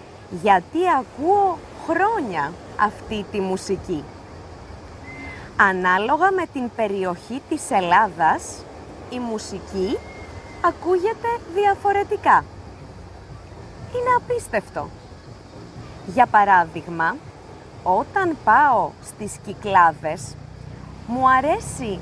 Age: 20-39